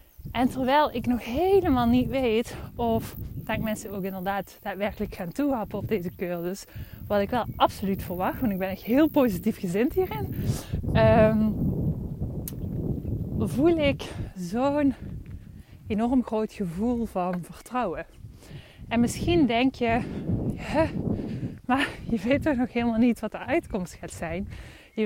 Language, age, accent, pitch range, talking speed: Dutch, 20-39, Dutch, 195-245 Hz, 135 wpm